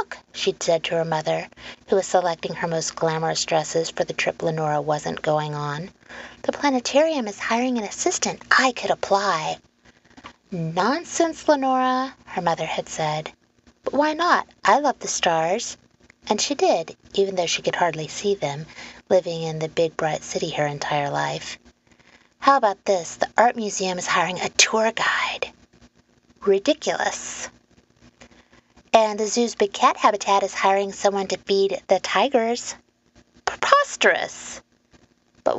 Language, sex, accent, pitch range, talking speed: English, female, American, 160-210 Hz, 145 wpm